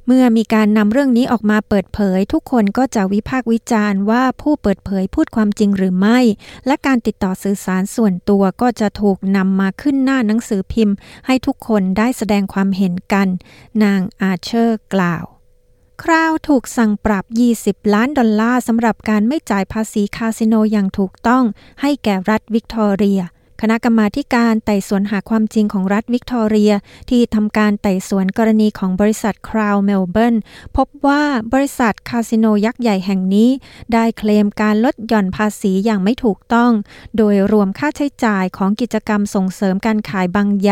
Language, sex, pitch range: Thai, female, 195-235 Hz